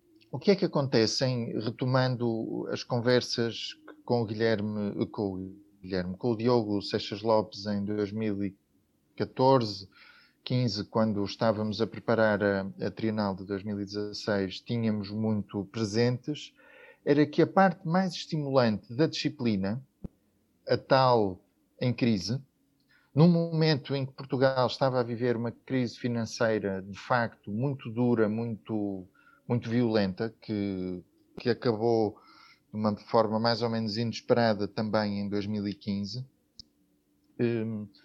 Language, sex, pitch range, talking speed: Portuguese, male, 105-135 Hz, 115 wpm